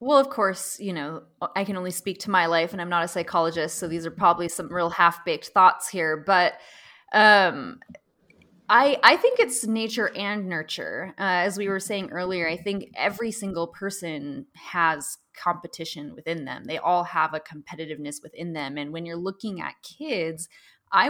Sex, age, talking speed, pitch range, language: female, 20-39, 180 wpm, 160-190 Hz, English